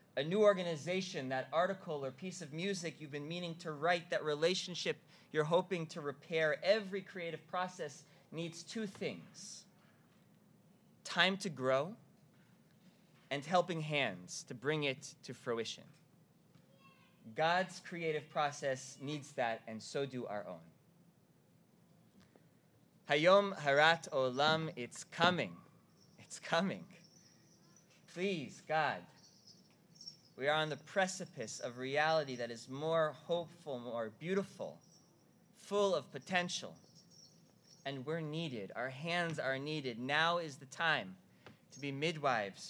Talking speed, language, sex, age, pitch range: 120 wpm, English, male, 20-39, 145-180 Hz